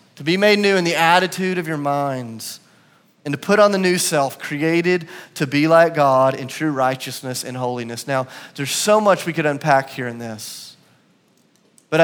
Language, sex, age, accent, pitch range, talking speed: English, male, 30-49, American, 145-205 Hz, 190 wpm